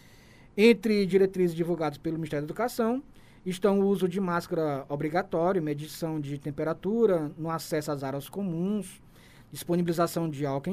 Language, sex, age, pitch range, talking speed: Portuguese, male, 20-39, 155-205 Hz, 135 wpm